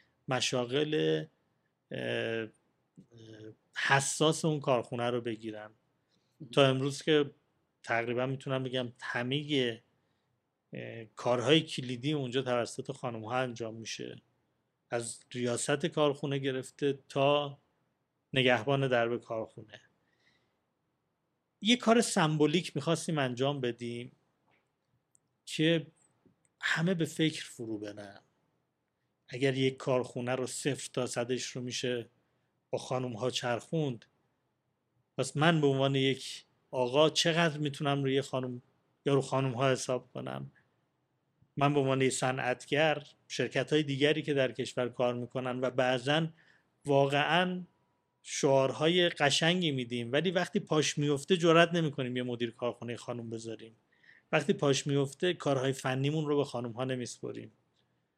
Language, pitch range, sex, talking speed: Persian, 125-150 Hz, male, 110 wpm